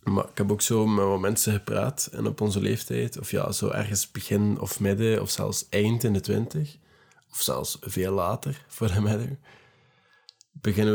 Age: 20-39